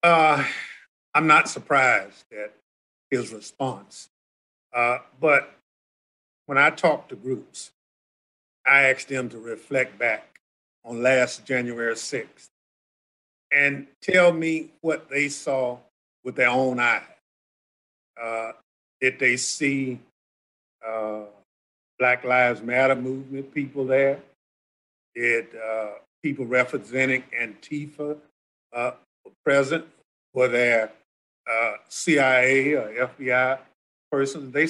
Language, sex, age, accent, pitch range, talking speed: English, male, 50-69, American, 125-155 Hz, 105 wpm